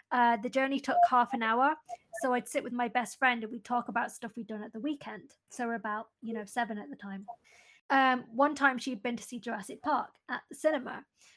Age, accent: 20-39, British